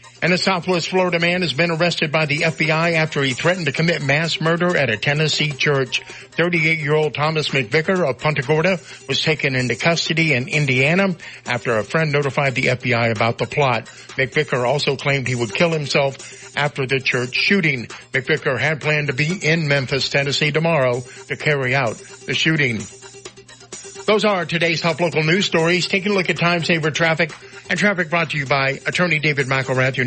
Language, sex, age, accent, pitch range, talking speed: English, male, 60-79, American, 135-165 Hz, 180 wpm